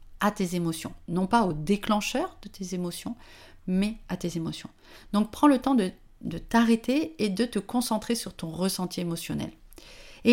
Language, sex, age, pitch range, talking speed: French, female, 40-59, 165-220 Hz, 175 wpm